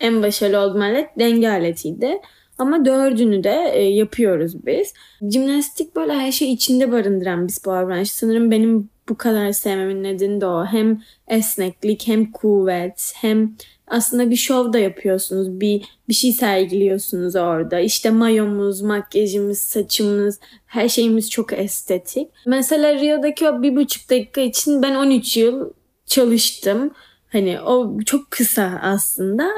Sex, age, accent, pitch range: female, 10-29, native, 200-260 Hz